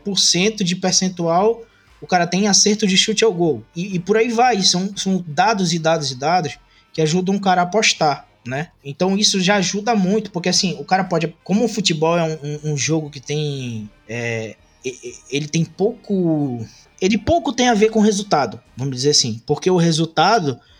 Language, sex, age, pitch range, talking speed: Portuguese, male, 20-39, 145-195 Hz, 195 wpm